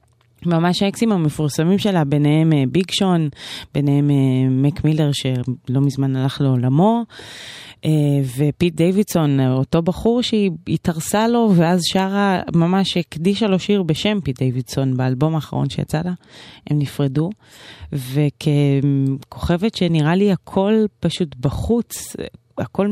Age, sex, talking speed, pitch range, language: 20-39, female, 105 wpm, 140-200 Hz, Hebrew